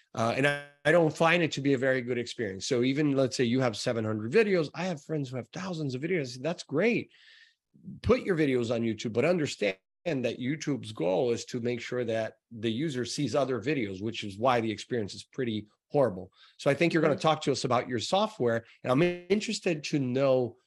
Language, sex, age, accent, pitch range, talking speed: English, male, 30-49, American, 115-155 Hz, 220 wpm